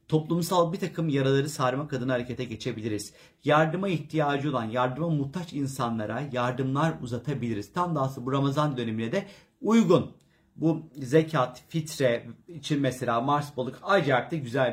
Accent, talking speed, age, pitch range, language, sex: native, 135 wpm, 50-69, 130-170 Hz, Turkish, male